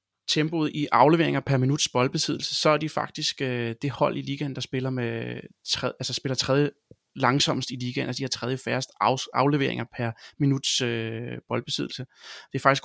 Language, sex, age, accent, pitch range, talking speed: Danish, male, 30-49, native, 130-155 Hz, 165 wpm